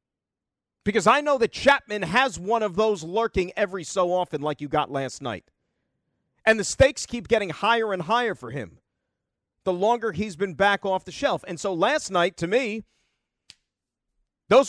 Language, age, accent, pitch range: English, 40-59, American, 180-235 Hz